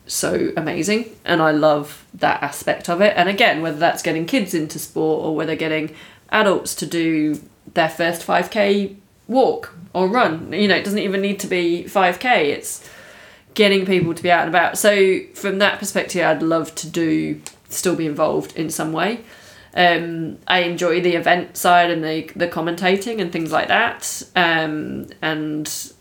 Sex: female